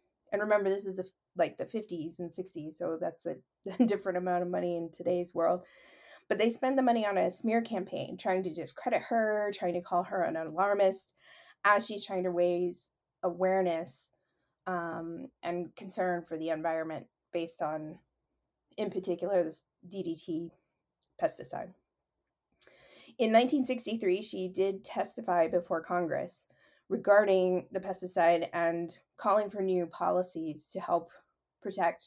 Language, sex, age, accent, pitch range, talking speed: English, female, 20-39, American, 170-205 Hz, 140 wpm